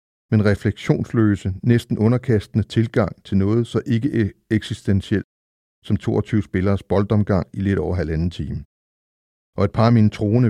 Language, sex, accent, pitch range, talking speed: Danish, male, native, 90-115 Hz, 145 wpm